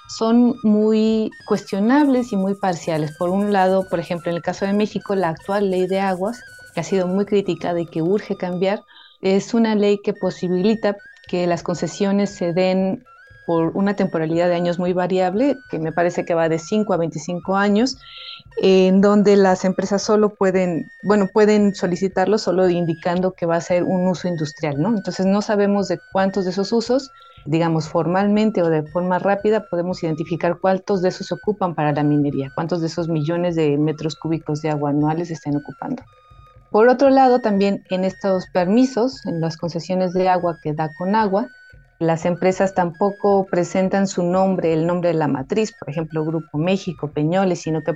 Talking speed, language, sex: 180 wpm, English, female